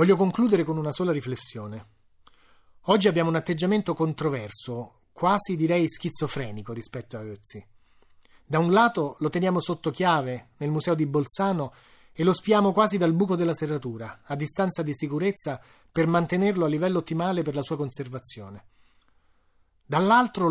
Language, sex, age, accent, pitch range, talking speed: Italian, male, 30-49, native, 130-185 Hz, 145 wpm